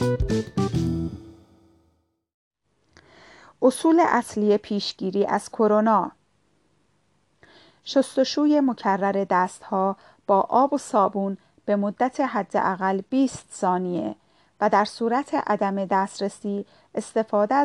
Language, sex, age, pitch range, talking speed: Persian, female, 40-59, 195-235 Hz, 80 wpm